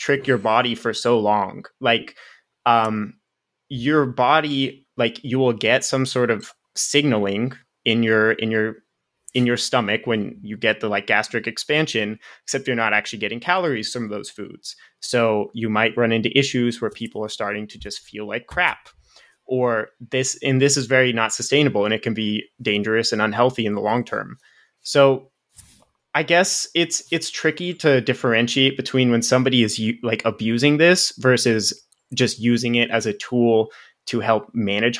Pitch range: 110-130 Hz